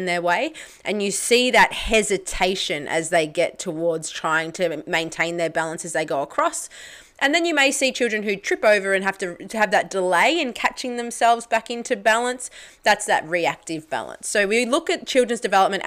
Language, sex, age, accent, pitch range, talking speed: English, female, 20-39, Australian, 175-230 Hz, 195 wpm